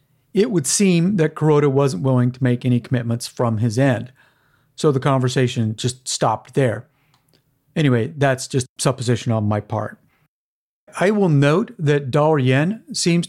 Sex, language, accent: male, English, American